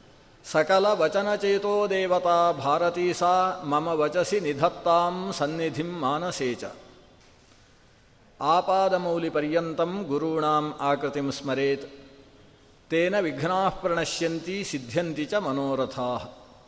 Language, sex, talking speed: Kannada, male, 40 wpm